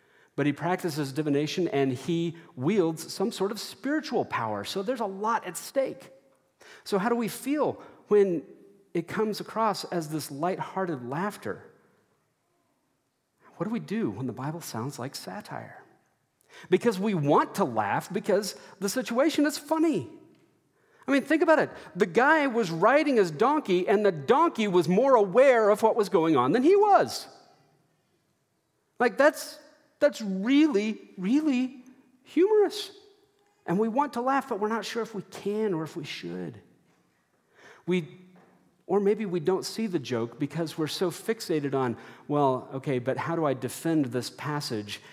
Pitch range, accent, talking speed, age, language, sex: 145-235 Hz, American, 160 wpm, 40-59, English, male